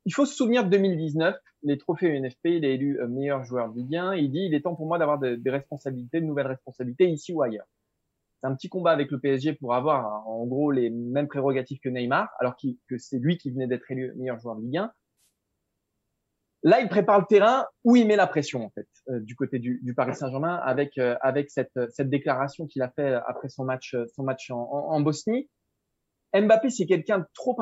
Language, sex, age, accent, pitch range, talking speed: French, male, 20-39, French, 130-190 Hz, 225 wpm